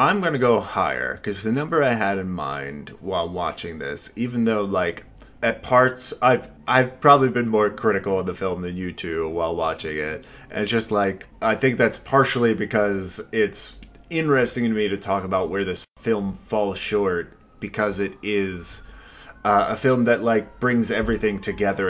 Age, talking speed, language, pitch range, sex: 30-49, 185 wpm, English, 95-120 Hz, male